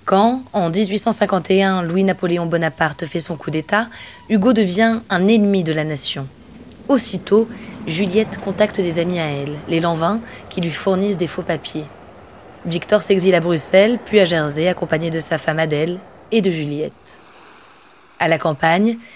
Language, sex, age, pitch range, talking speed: French, female, 20-39, 165-200 Hz, 155 wpm